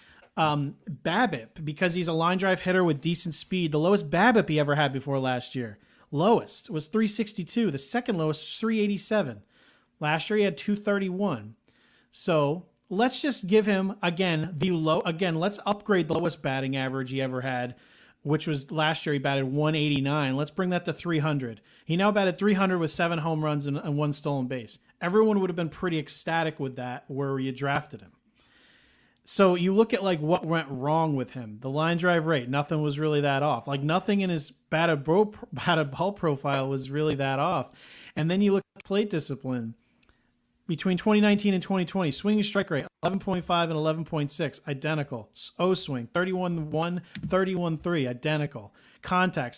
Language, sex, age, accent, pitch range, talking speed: English, male, 40-59, American, 145-190 Hz, 170 wpm